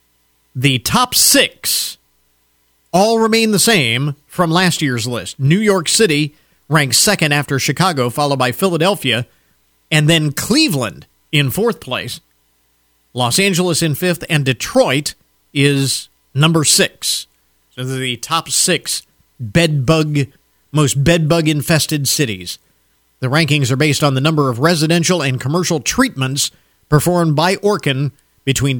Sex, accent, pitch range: male, American, 120-170 Hz